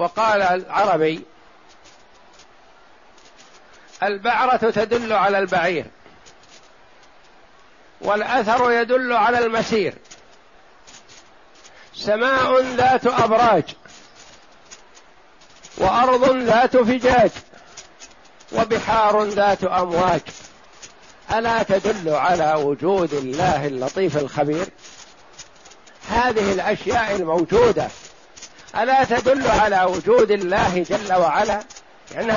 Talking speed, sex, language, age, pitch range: 70 wpm, male, Arabic, 60-79, 195-255 Hz